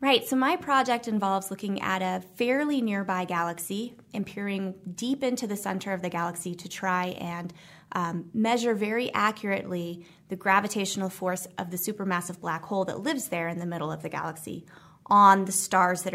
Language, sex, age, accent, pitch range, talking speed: English, female, 20-39, American, 175-205 Hz, 180 wpm